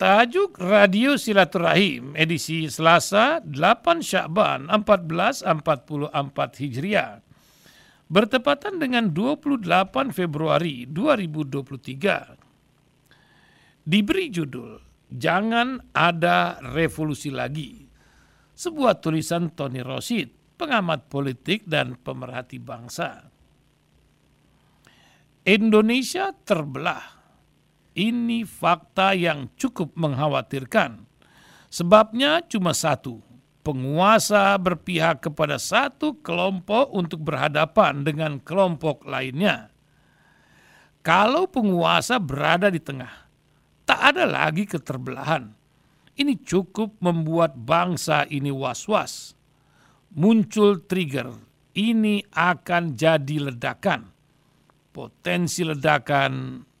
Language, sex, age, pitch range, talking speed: Indonesian, male, 60-79, 145-205 Hz, 75 wpm